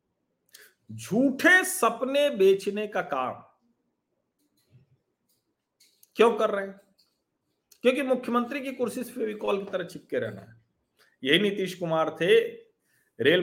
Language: Hindi